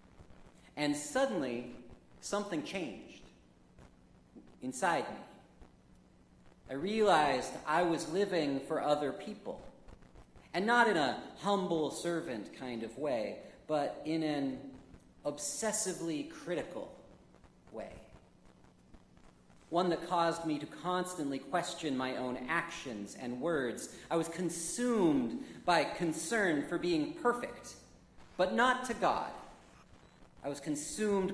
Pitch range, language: 130-175 Hz, English